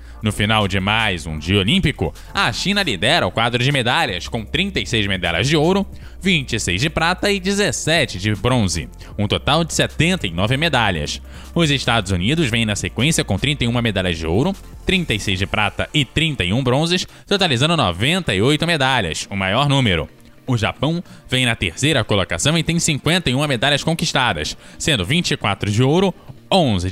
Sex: male